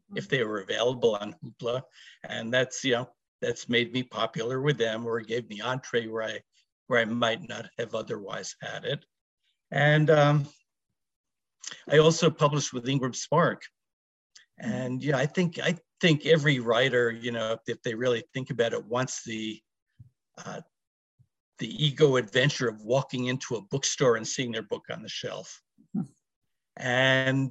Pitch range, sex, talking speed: 120-145 Hz, male, 160 wpm